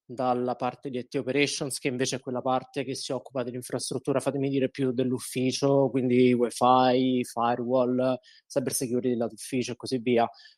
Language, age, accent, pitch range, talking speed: Italian, 20-39, native, 130-155 Hz, 145 wpm